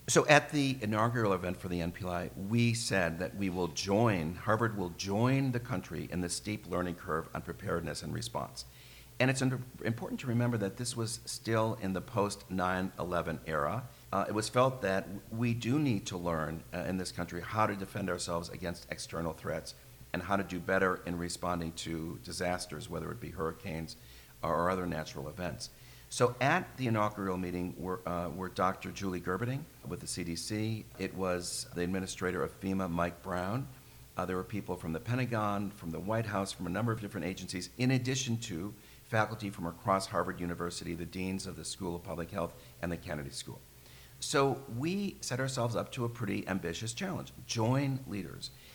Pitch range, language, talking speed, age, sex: 85-110 Hz, English, 185 wpm, 50-69, male